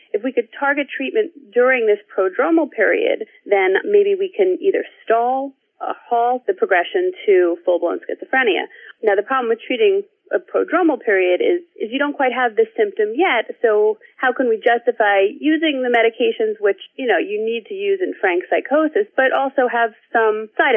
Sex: female